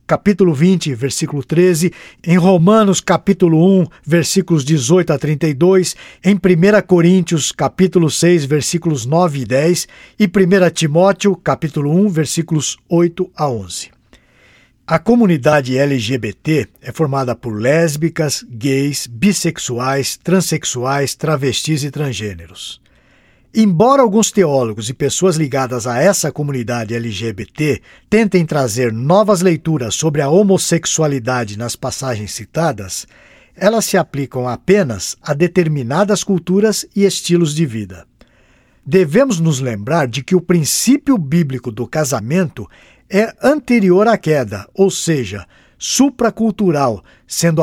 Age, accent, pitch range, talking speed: 60-79, Brazilian, 135-190 Hz, 115 wpm